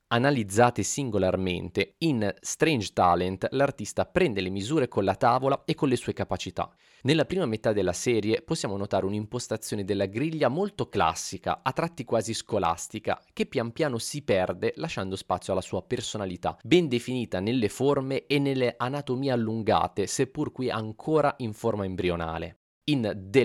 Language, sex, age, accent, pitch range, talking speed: Italian, male, 20-39, native, 95-130 Hz, 150 wpm